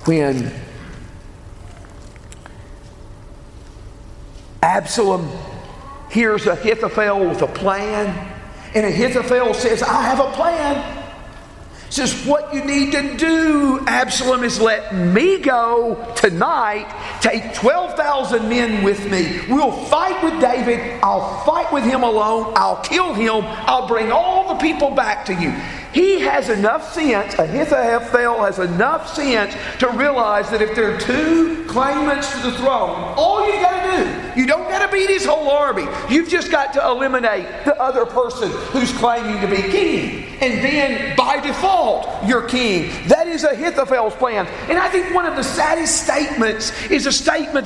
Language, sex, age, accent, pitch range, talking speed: English, male, 50-69, American, 220-295 Hz, 150 wpm